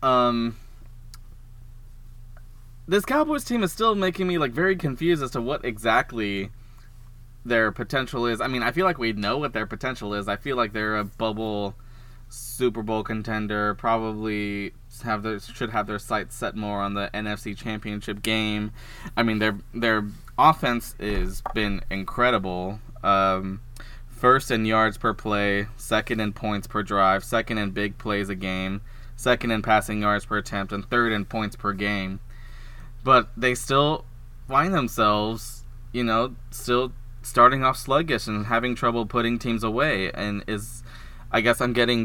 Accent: American